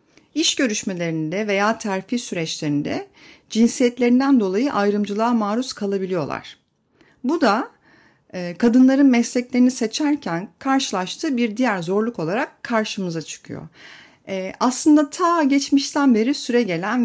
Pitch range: 180-250 Hz